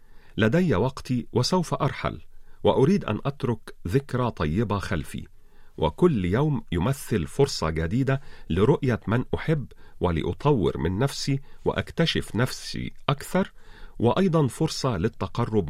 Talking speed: 105 wpm